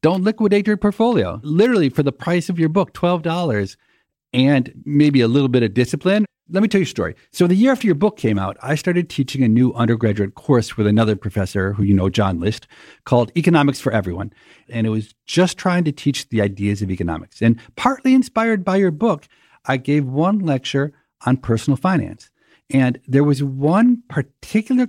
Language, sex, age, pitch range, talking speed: English, male, 50-69, 115-175 Hz, 195 wpm